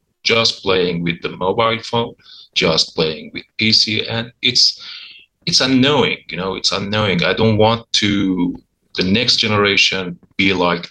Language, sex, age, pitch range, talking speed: English, male, 30-49, 95-120 Hz, 150 wpm